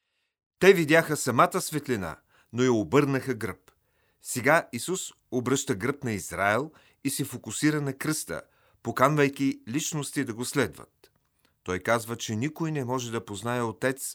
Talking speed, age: 140 wpm, 40-59